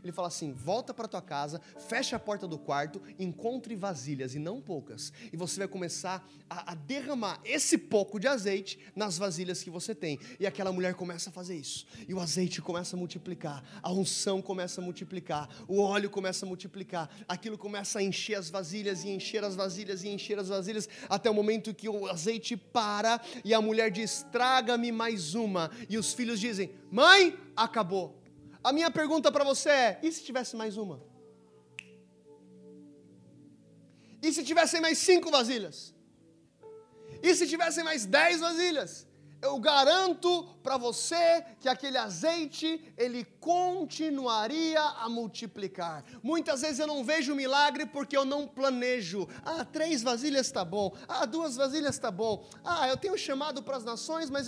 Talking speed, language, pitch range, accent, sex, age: 165 wpm, Portuguese, 185-275 Hz, Brazilian, male, 20-39